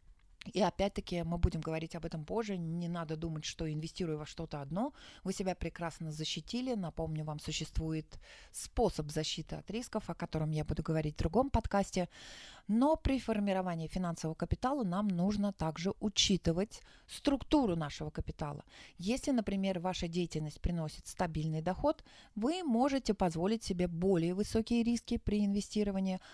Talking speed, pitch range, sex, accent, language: 145 wpm, 160-205 Hz, female, native, Russian